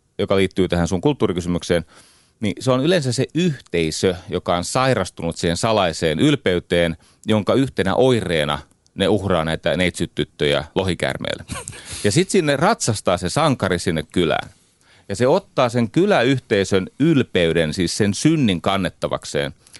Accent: native